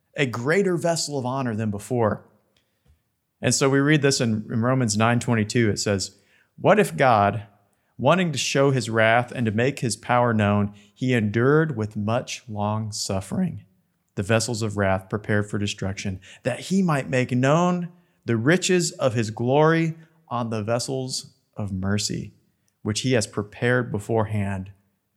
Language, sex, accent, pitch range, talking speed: English, male, American, 105-130 Hz, 155 wpm